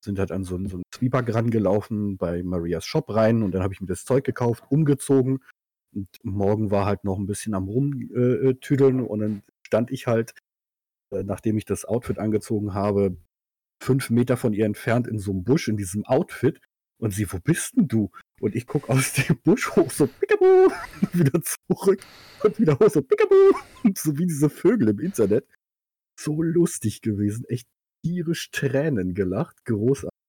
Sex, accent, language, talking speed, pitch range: male, German, German, 180 wpm, 100-130 Hz